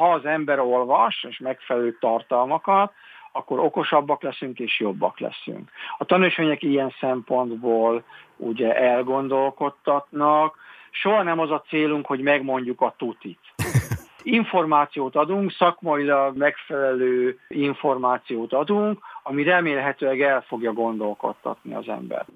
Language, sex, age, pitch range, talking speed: Hungarian, male, 50-69, 125-160 Hz, 110 wpm